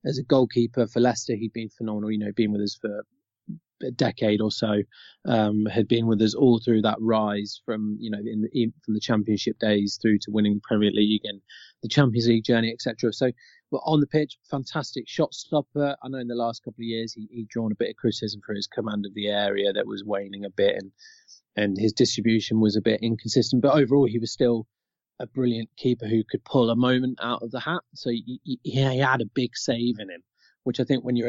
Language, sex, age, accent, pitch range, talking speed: English, male, 20-39, British, 110-125 Hz, 230 wpm